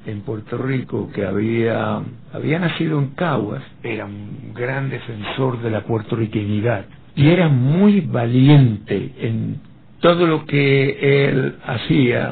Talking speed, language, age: 125 wpm, Spanish, 60-79